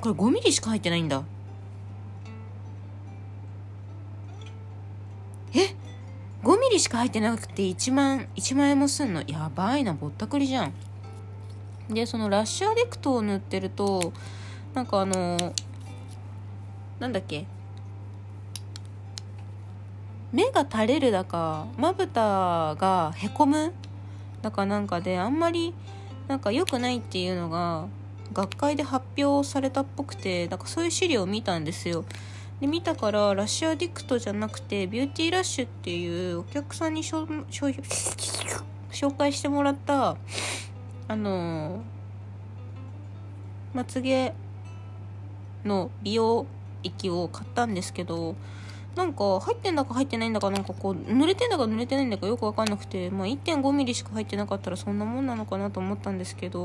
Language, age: Japanese, 20-39